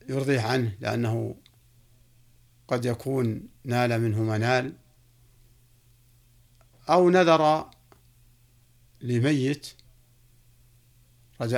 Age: 60-79